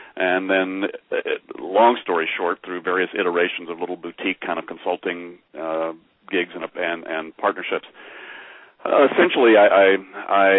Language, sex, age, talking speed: English, male, 40-59, 135 wpm